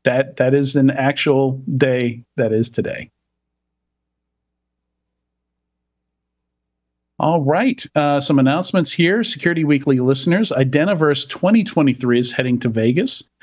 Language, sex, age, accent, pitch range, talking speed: English, male, 50-69, American, 120-145 Hz, 105 wpm